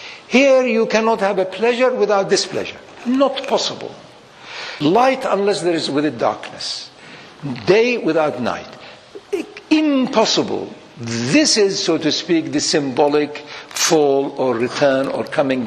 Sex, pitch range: male, 160-245 Hz